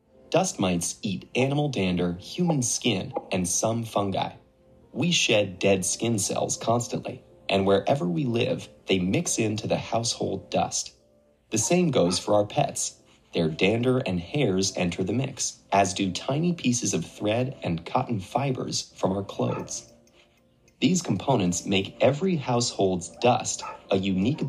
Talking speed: 145 wpm